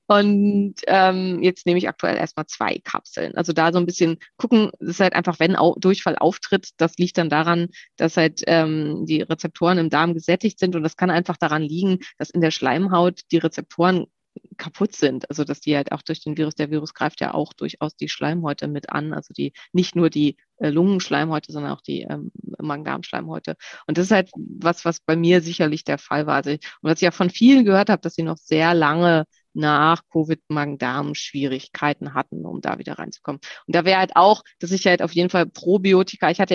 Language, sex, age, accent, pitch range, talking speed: German, female, 20-39, German, 155-180 Hz, 210 wpm